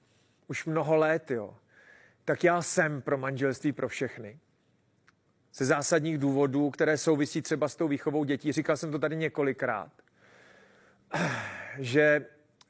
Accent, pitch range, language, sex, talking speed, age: native, 140-160 Hz, Czech, male, 130 wpm, 40-59